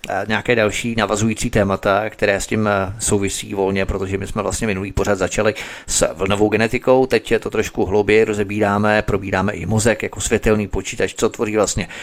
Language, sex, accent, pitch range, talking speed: Czech, male, native, 95-110 Hz, 175 wpm